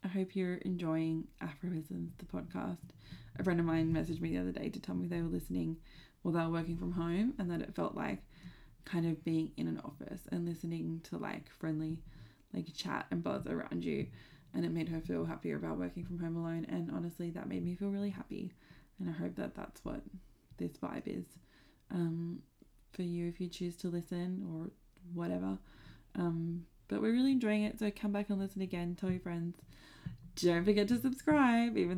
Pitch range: 155-190 Hz